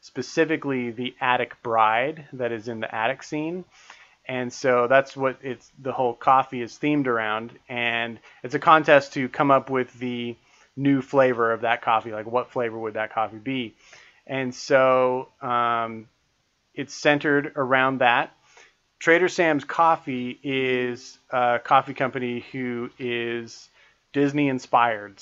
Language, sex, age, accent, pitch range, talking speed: English, male, 30-49, American, 115-135 Hz, 140 wpm